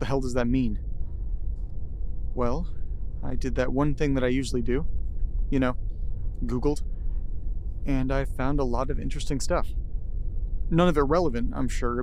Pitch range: 80-130 Hz